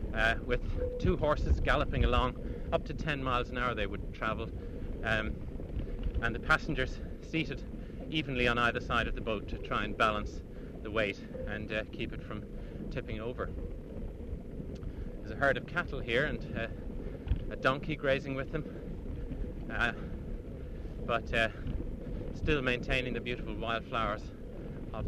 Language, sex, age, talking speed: English, male, 30-49, 150 wpm